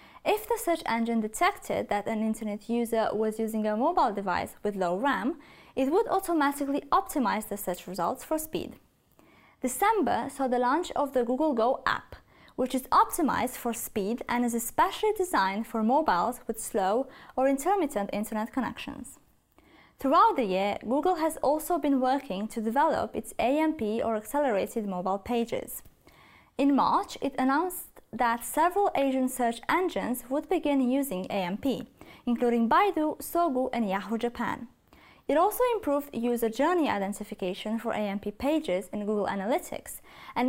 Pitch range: 220-295 Hz